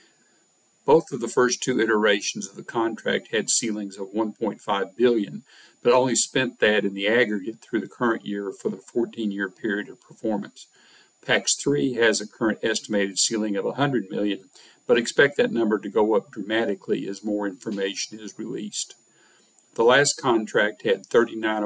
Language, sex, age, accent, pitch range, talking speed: English, male, 50-69, American, 105-115 Hz, 165 wpm